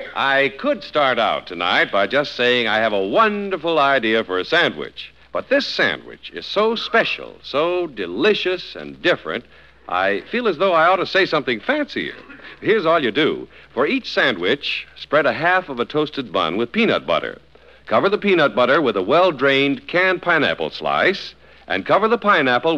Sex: male